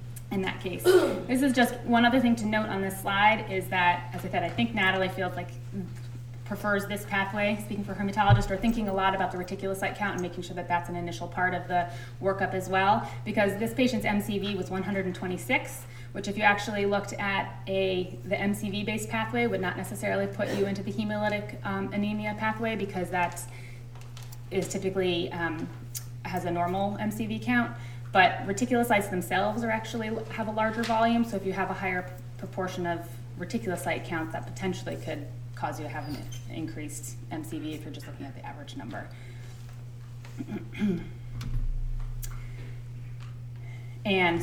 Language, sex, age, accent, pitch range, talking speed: English, female, 20-39, American, 120-190 Hz, 170 wpm